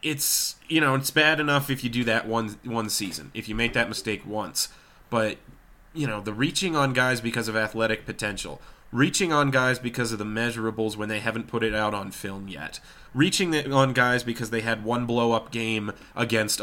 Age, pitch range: 20-39, 105-120 Hz